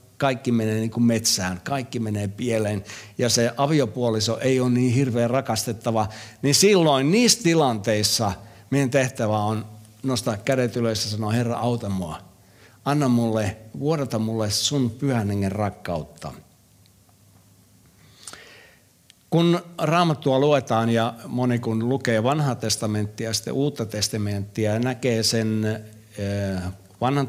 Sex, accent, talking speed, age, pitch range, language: male, native, 120 wpm, 60-79, 105-135 Hz, Finnish